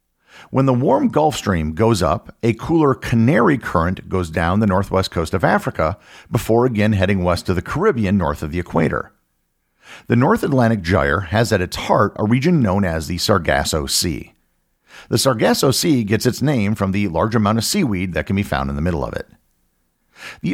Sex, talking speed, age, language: male, 195 wpm, 50-69, English